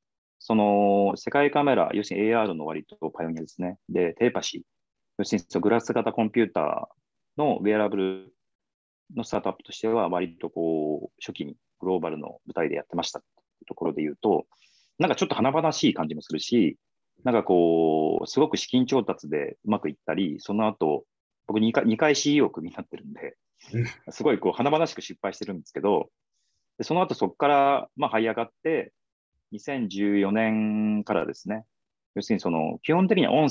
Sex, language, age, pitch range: male, Japanese, 40-59, 95-135 Hz